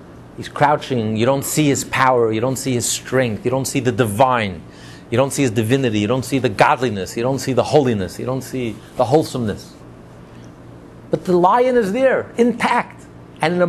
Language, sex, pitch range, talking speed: English, male, 115-180 Hz, 200 wpm